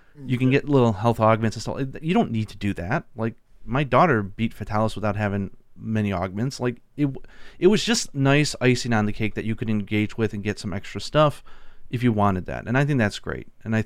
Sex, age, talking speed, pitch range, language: male, 30-49, 235 wpm, 105-125 Hz, English